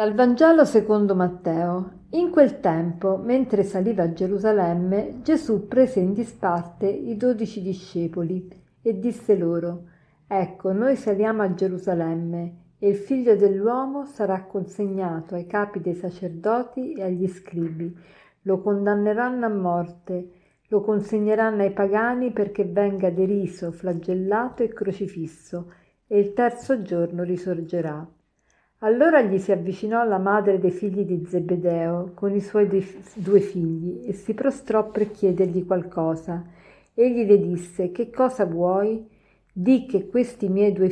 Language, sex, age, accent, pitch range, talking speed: Italian, female, 50-69, native, 180-220 Hz, 130 wpm